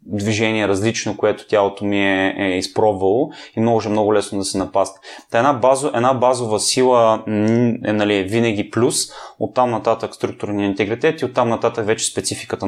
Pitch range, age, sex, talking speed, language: 105-125 Hz, 20-39, male, 170 wpm, Bulgarian